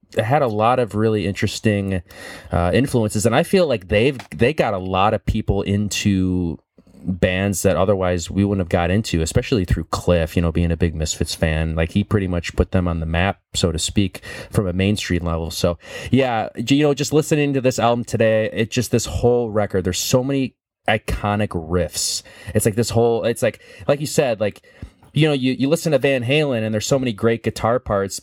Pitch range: 90-115 Hz